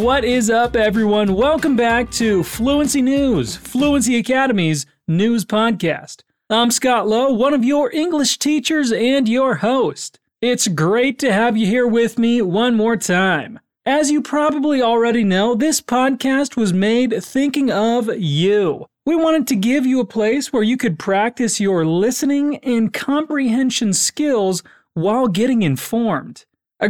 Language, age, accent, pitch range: Portuguese, 30-49, American, 210-275 Hz